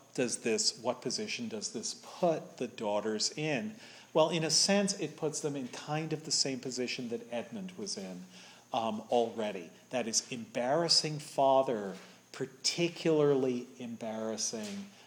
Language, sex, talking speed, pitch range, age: English, male, 140 wpm, 115-165 Hz, 40-59